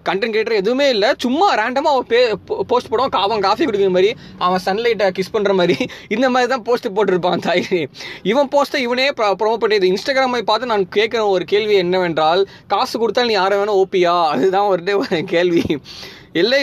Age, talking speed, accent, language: 20-39, 160 wpm, native, Tamil